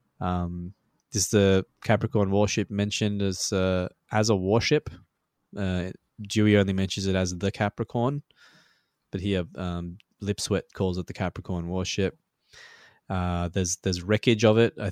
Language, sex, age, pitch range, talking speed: English, male, 20-39, 90-105 Hz, 140 wpm